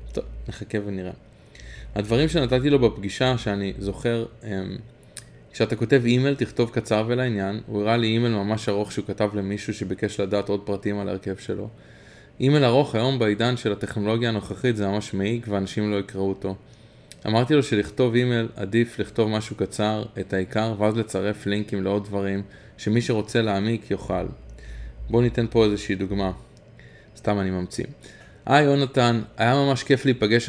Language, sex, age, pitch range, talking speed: Hebrew, male, 20-39, 100-125 Hz, 155 wpm